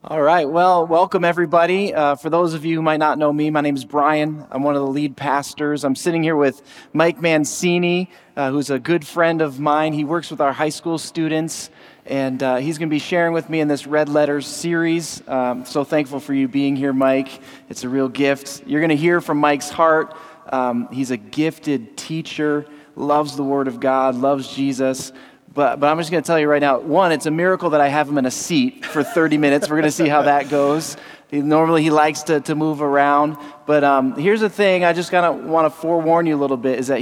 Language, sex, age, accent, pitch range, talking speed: English, male, 30-49, American, 140-160 Hz, 240 wpm